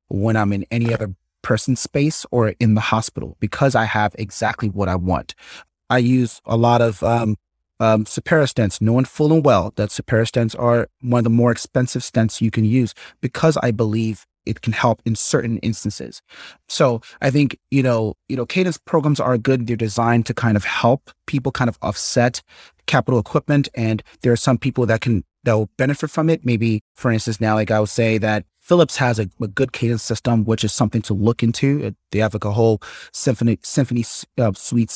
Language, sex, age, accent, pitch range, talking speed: English, male, 30-49, American, 110-125 Hz, 205 wpm